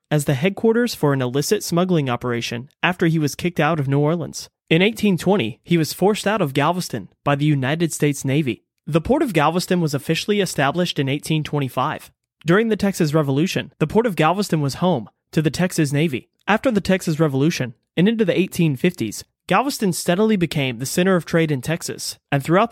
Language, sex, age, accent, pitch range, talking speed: English, male, 30-49, American, 140-180 Hz, 190 wpm